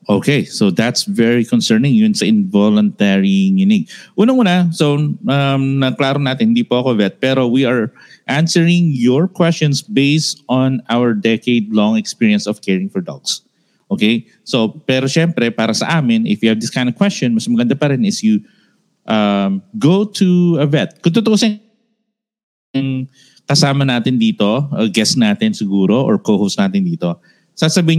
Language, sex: English, male